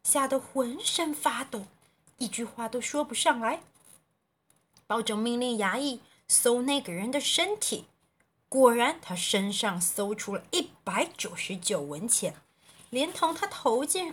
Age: 30-49